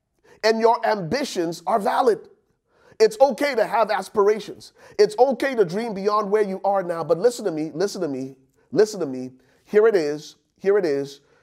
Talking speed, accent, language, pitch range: 185 wpm, American, English, 165-265 Hz